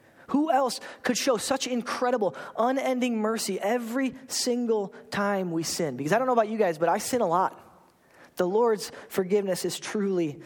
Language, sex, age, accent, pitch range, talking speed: English, male, 20-39, American, 170-230 Hz, 170 wpm